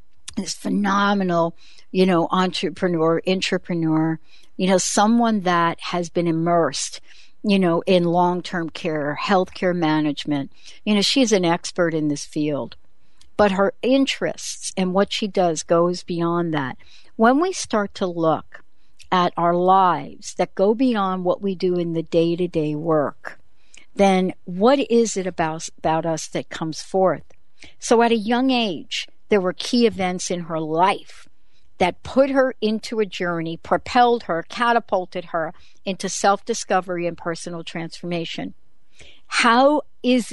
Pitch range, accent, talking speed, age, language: 170-220 Hz, American, 140 wpm, 60-79, English